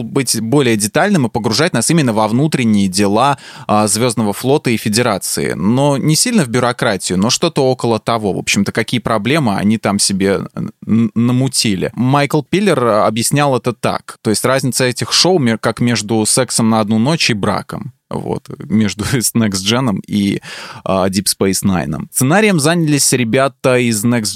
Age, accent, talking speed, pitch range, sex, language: 20-39, native, 160 wpm, 105-135 Hz, male, Russian